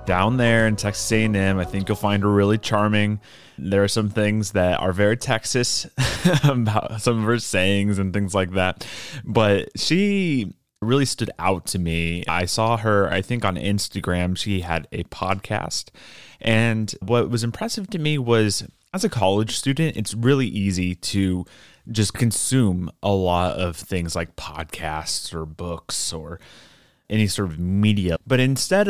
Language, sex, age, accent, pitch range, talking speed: English, male, 20-39, American, 90-115 Hz, 165 wpm